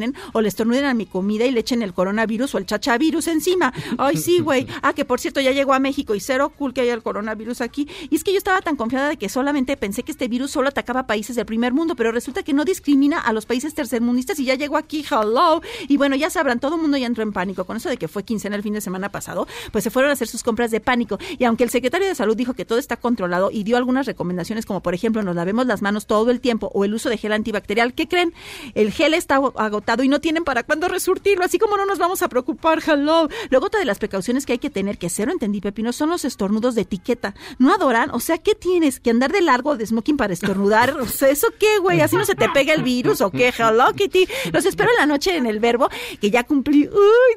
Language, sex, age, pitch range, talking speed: Spanish, female, 40-59, 225-315 Hz, 265 wpm